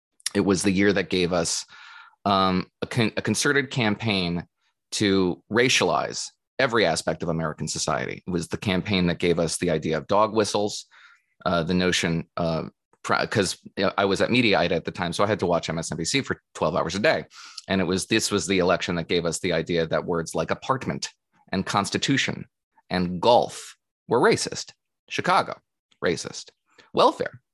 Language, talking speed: English, 175 wpm